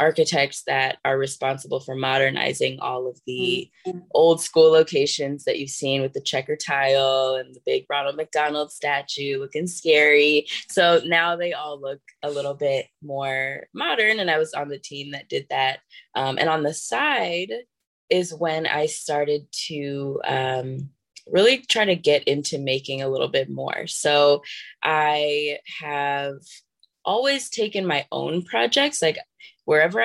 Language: English